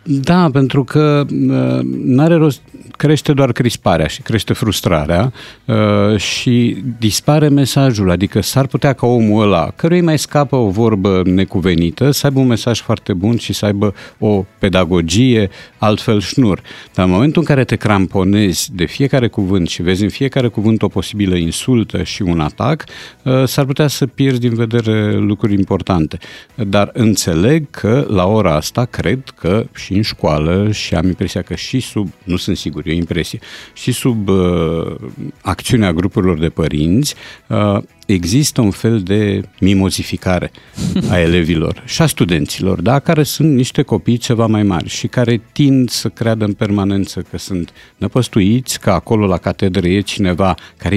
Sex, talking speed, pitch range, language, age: male, 160 wpm, 95-125 Hz, Romanian, 50-69